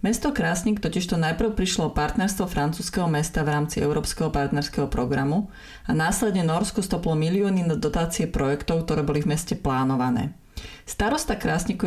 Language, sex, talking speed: Slovak, female, 140 wpm